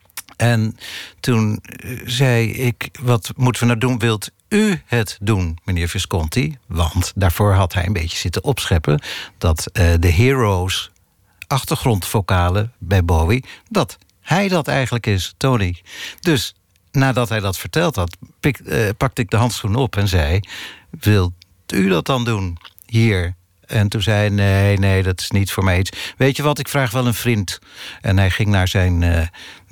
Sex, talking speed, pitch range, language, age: male, 165 wpm, 95-125 Hz, Dutch, 60-79